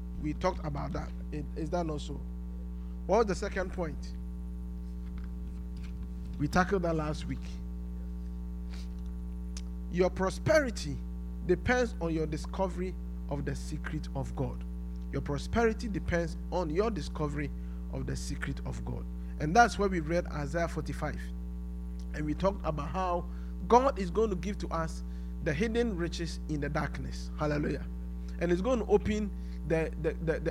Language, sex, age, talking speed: English, male, 50-69, 140 wpm